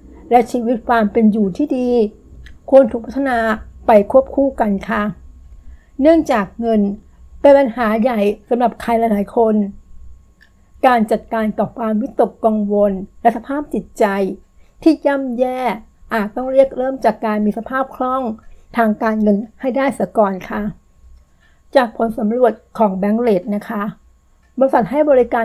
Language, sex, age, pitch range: Thai, female, 60-79, 210-250 Hz